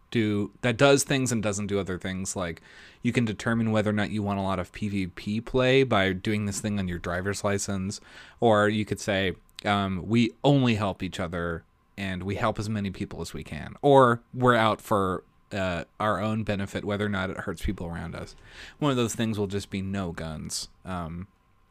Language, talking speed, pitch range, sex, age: English, 210 wpm, 95-115 Hz, male, 30-49